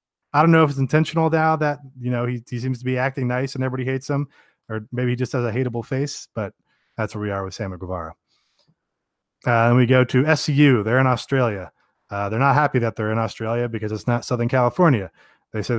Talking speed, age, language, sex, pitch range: 230 wpm, 20-39, English, male, 105-130 Hz